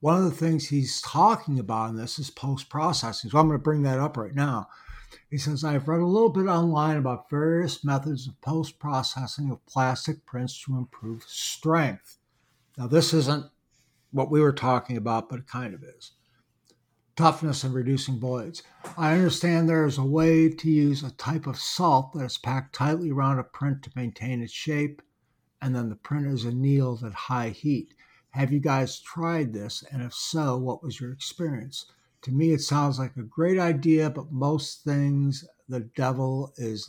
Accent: American